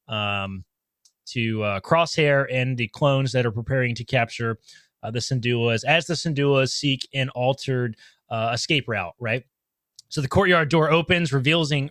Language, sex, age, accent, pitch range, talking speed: English, male, 20-39, American, 120-155 Hz, 155 wpm